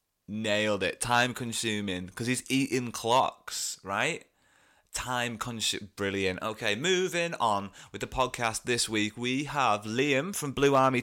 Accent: British